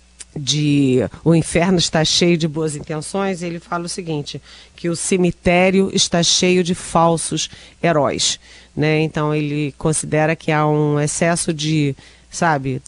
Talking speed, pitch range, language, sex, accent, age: 140 wpm, 150-190 Hz, Portuguese, female, Brazilian, 40-59